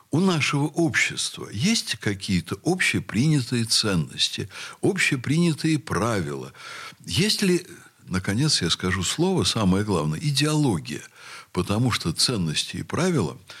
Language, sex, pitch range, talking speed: Russian, male, 95-150 Hz, 100 wpm